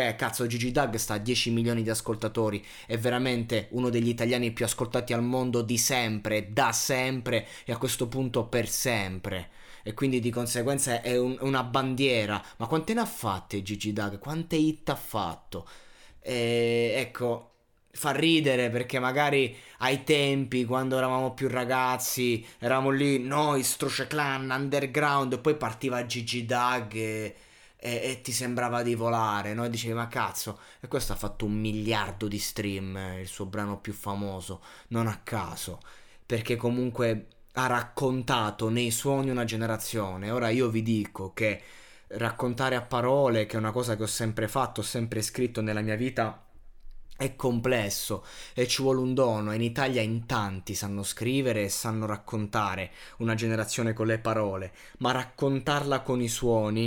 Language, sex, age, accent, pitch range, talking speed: Italian, male, 20-39, native, 110-130 Hz, 165 wpm